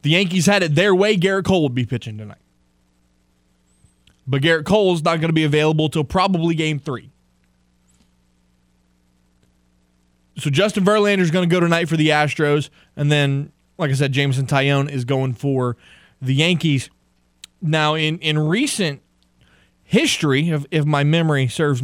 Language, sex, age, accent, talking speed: English, male, 20-39, American, 160 wpm